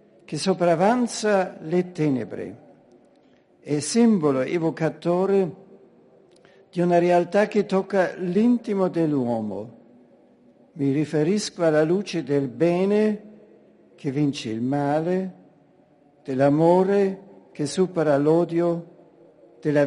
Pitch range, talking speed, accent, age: 155-190 Hz, 90 wpm, native, 60-79